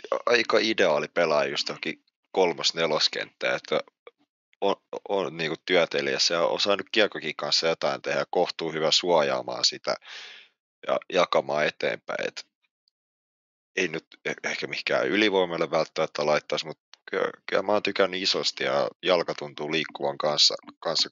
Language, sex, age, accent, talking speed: Finnish, male, 30-49, native, 135 wpm